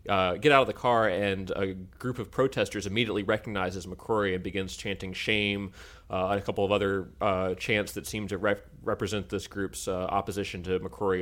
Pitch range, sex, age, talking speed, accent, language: 90-105 Hz, male, 30-49, 200 wpm, American, English